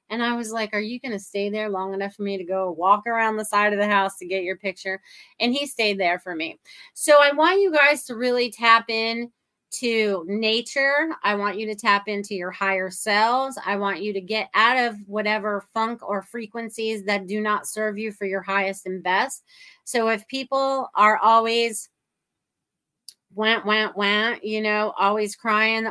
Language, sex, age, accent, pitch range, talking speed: English, female, 30-49, American, 200-230 Hz, 200 wpm